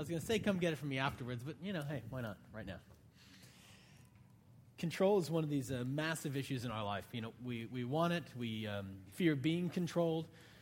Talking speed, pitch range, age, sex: 230 wpm, 135-170 Hz, 30-49, male